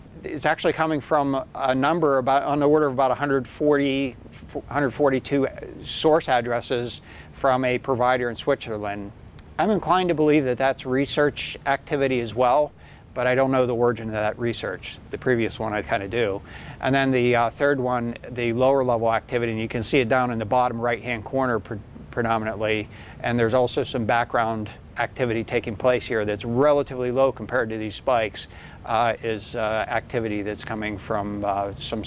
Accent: American